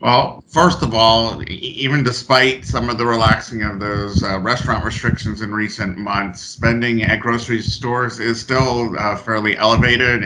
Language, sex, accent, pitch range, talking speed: English, male, American, 105-125 Hz, 160 wpm